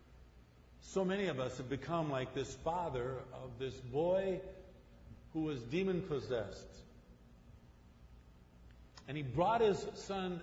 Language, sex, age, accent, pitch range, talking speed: English, male, 50-69, American, 110-160 Hz, 115 wpm